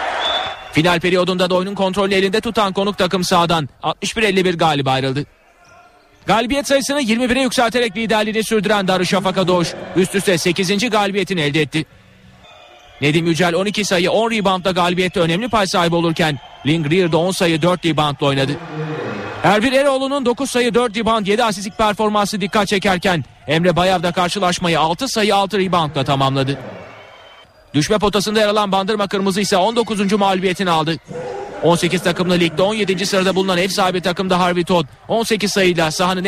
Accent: native